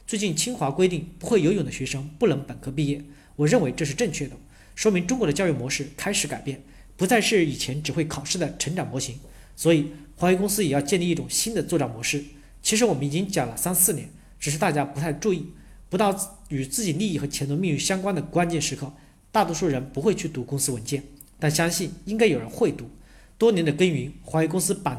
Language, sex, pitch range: Chinese, male, 140-185 Hz